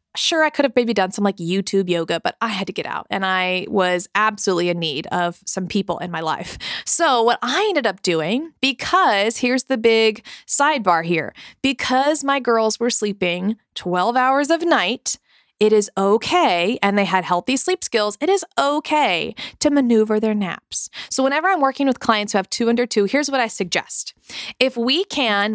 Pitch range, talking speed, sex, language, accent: 195-265 Hz, 195 wpm, female, English, American